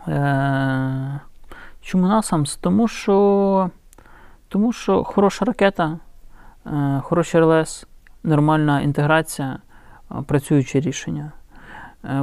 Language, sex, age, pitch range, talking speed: Ukrainian, male, 30-49, 140-175 Hz, 90 wpm